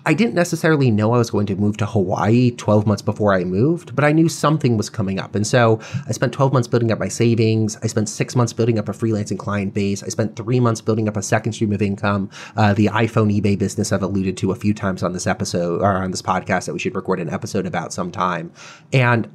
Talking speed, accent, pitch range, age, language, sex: 250 wpm, American, 105-145 Hz, 30-49, English, male